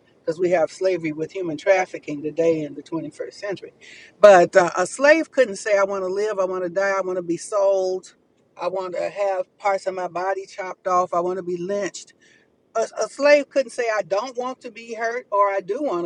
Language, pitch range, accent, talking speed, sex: English, 180-230 Hz, American, 230 wpm, female